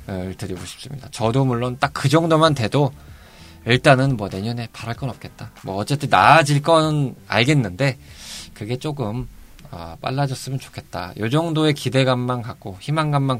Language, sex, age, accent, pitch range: Korean, male, 20-39, native, 95-130 Hz